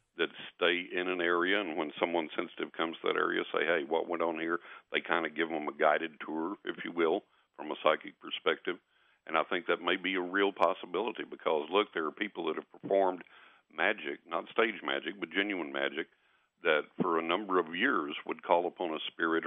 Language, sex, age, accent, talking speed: English, male, 60-79, American, 215 wpm